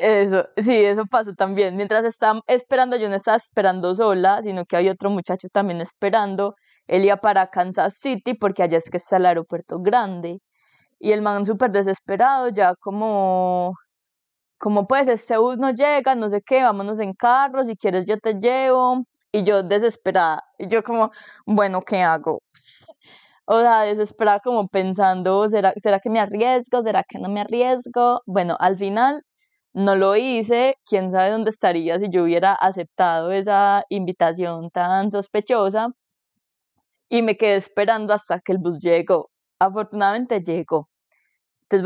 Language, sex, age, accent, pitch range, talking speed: Spanish, female, 20-39, Colombian, 190-235 Hz, 160 wpm